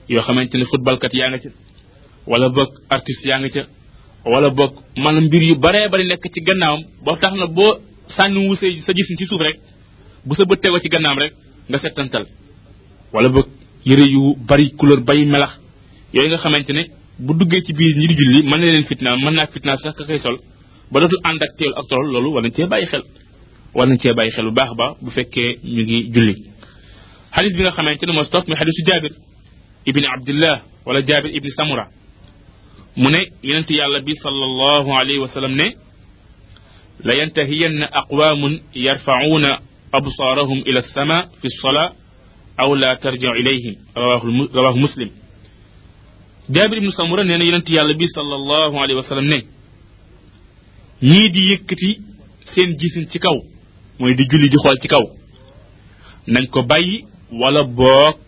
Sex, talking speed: male, 110 wpm